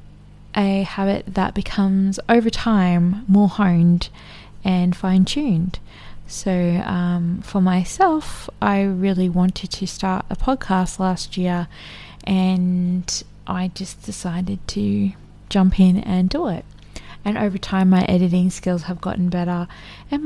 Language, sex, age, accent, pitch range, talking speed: English, female, 20-39, Australian, 175-195 Hz, 125 wpm